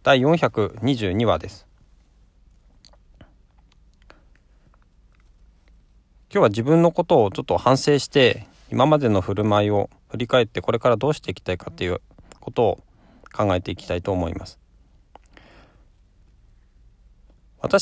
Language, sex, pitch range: Japanese, male, 90-130 Hz